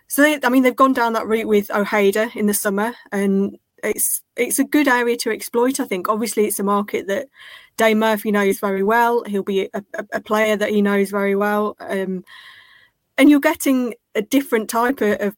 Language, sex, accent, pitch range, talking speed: English, female, British, 195-230 Hz, 200 wpm